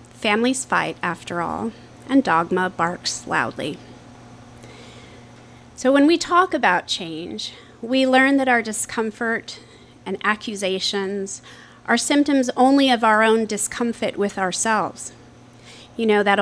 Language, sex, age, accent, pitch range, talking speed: English, female, 30-49, American, 185-230 Hz, 120 wpm